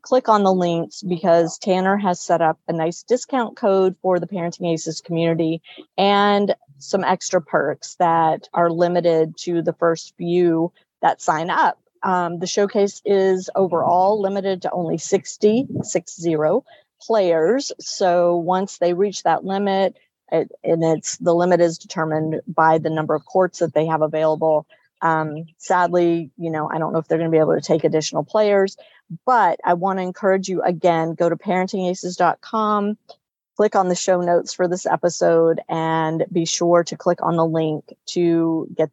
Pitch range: 165-200 Hz